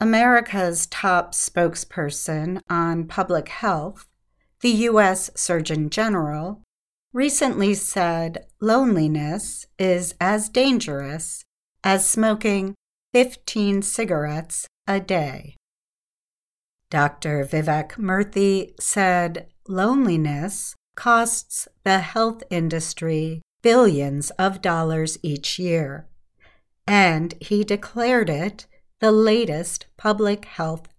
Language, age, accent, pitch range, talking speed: English, 50-69, American, 160-215 Hz, 85 wpm